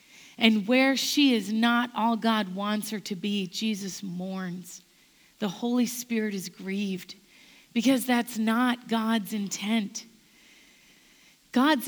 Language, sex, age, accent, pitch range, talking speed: English, female, 40-59, American, 220-275 Hz, 120 wpm